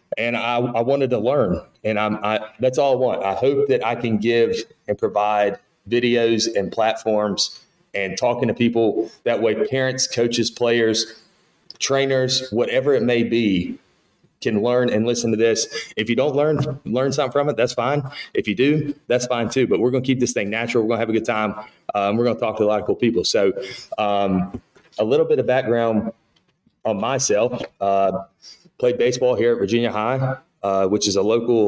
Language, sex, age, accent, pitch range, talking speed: English, male, 30-49, American, 105-125 Hz, 205 wpm